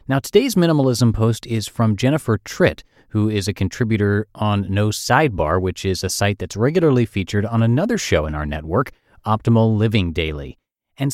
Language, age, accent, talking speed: English, 30-49, American, 170 wpm